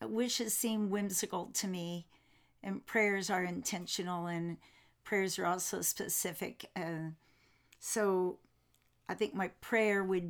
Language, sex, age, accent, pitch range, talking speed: English, female, 50-69, American, 165-200 Hz, 120 wpm